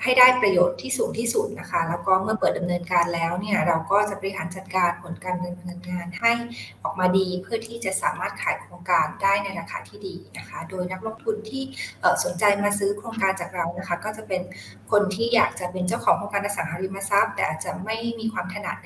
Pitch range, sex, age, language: 175-215 Hz, female, 20-39, Thai